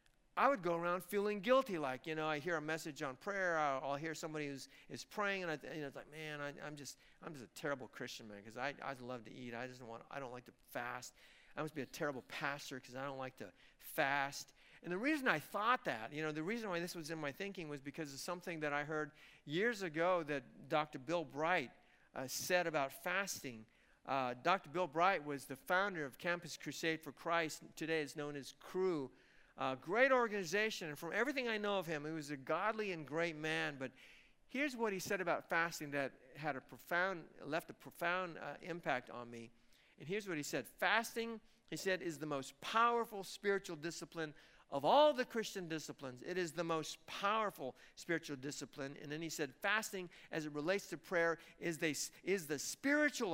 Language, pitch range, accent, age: English, 145-185 Hz, American, 50-69